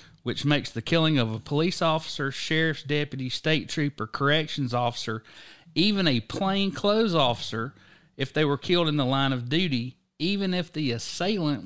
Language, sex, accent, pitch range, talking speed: English, male, American, 125-160 Hz, 160 wpm